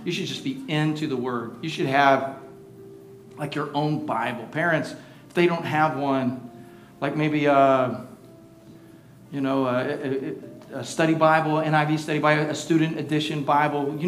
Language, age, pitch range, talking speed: English, 40-59, 135-165 Hz, 160 wpm